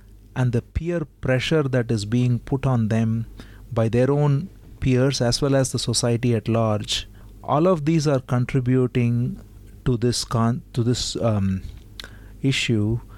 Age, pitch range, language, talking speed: 30-49, 110-135 Hz, Hindi, 150 wpm